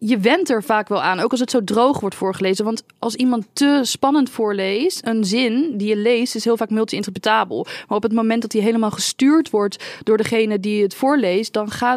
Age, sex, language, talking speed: 20-39, female, Dutch, 220 wpm